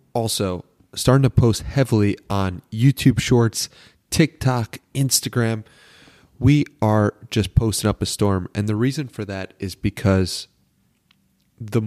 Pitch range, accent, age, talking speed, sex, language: 95-115 Hz, American, 30-49, 125 wpm, male, English